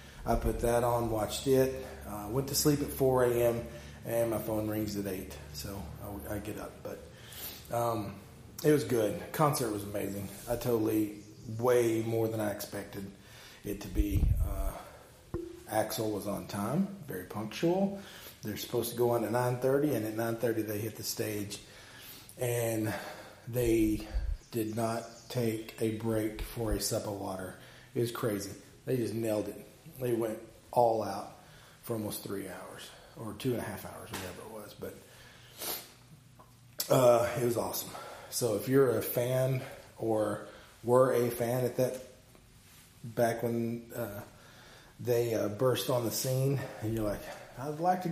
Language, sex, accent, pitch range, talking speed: English, male, American, 105-125 Hz, 160 wpm